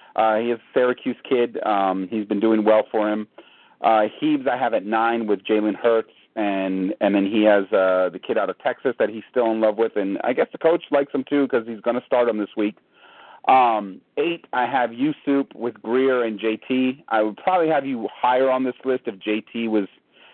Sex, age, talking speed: male, 30-49, 225 wpm